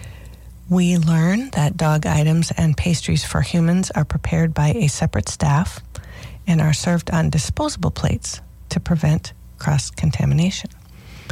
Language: English